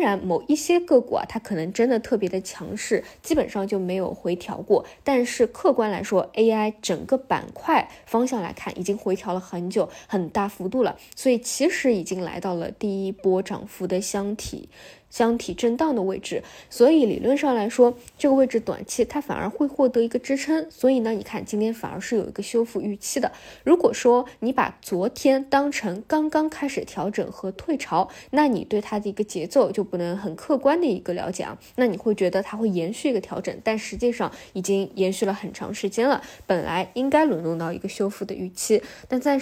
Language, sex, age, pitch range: Chinese, female, 10-29, 190-255 Hz